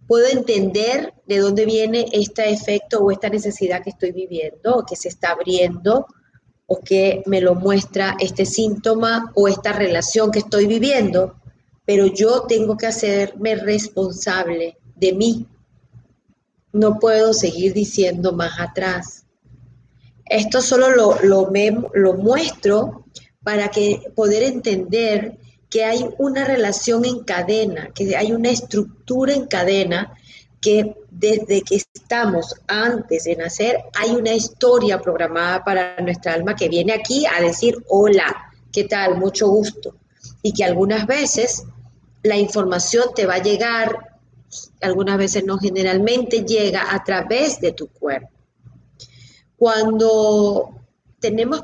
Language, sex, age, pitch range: Spanish, female, 30-49, 180-225 Hz